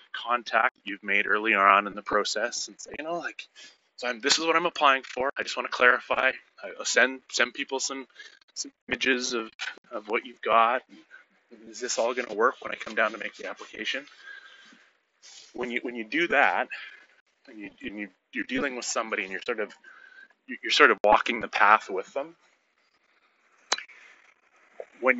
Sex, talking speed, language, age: male, 190 wpm, English, 30-49